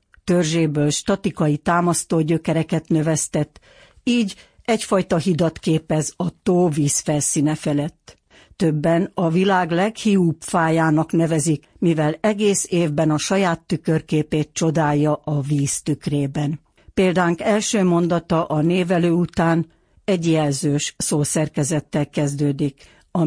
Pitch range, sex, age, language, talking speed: 150-180 Hz, female, 60-79, Hungarian, 105 wpm